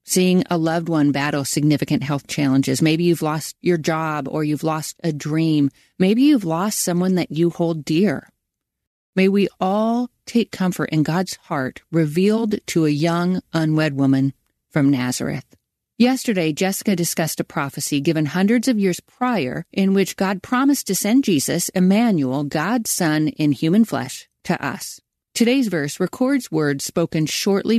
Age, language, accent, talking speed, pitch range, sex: 40-59, English, American, 160 wpm, 150-220 Hz, female